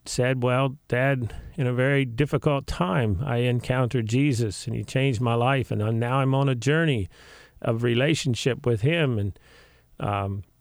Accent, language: American, English